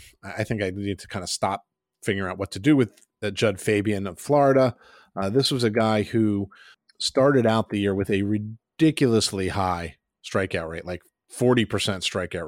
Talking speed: 185 wpm